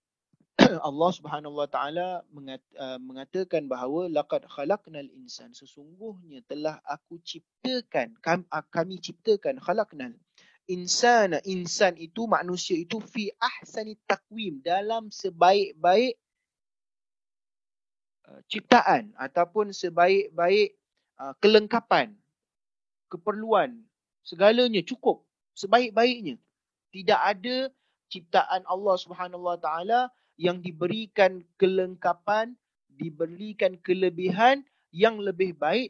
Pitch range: 165-225 Hz